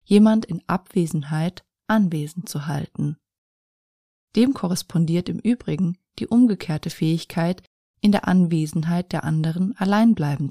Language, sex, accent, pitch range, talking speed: German, female, German, 160-205 Hz, 115 wpm